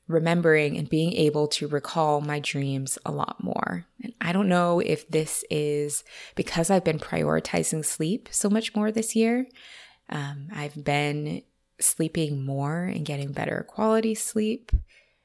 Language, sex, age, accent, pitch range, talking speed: English, female, 20-39, American, 145-180 Hz, 150 wpm